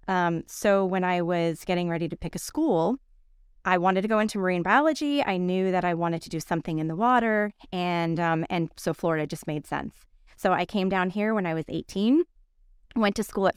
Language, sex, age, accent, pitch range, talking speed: English, female, 20-39, American, 165-210 Hz, 220 wpm